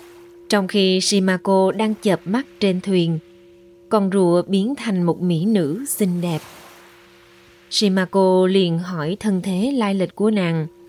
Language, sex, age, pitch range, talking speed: Vietnamese, female, 20-39, 175-265 Hz, 145 wpm